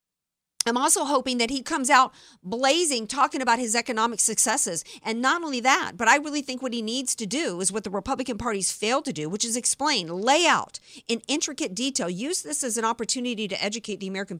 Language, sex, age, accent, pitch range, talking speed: English, female, 50-69, American, 210-275 Hz, 215 wpm